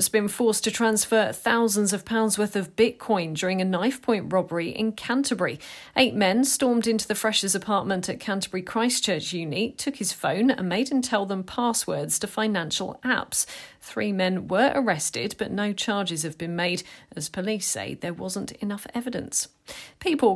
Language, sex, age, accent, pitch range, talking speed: English, female, 40-59, British, 180-235 Hz, 170 wpm